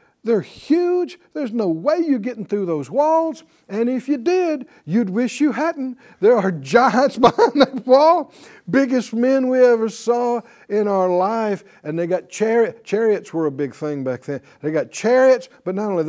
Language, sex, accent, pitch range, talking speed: English, male, American, 155-250 Hz, 185 wpm